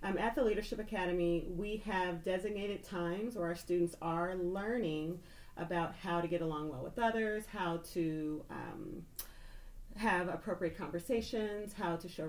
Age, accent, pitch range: 40-59, American, 170-195 Hz